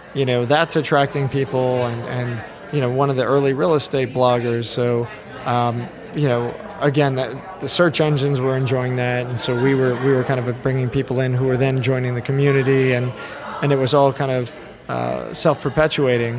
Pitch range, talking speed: 130-145 Hz, 200 wpm